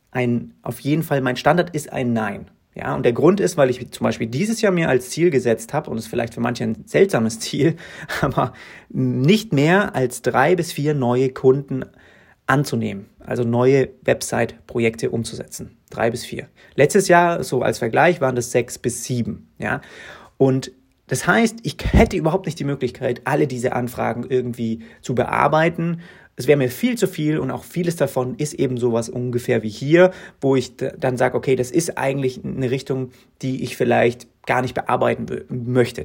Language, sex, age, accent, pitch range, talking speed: German, male, 30-49, German, 120-155 Hz, 185 wpm